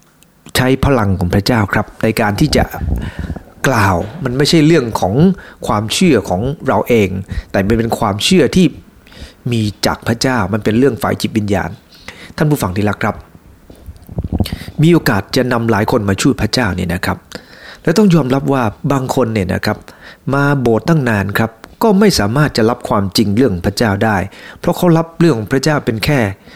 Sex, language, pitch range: male, English, 105-145 Hz